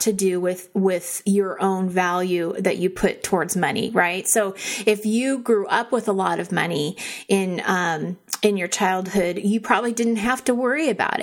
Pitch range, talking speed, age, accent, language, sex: 185-220 Hz, 185 wpm, 30-49, American, English, female